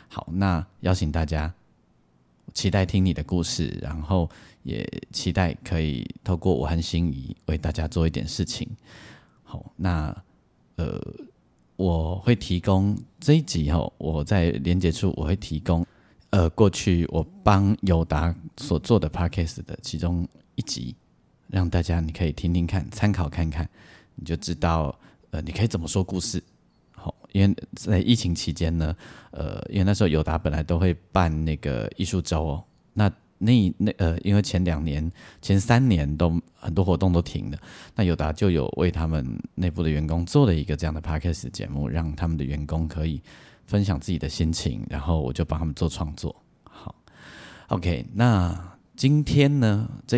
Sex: male